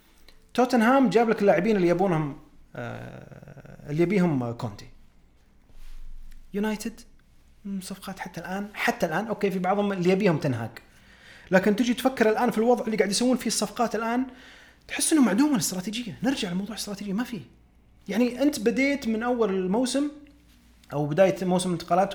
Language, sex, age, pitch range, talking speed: Arabic, male, 30-49, 155-240 Hz, 145 wpm